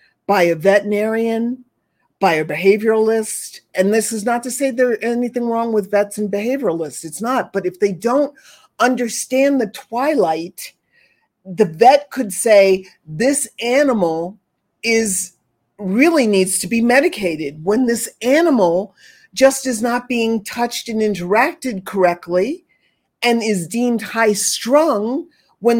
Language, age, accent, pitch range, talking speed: English, 50-69, American, 185-255 Hz, 135 wpm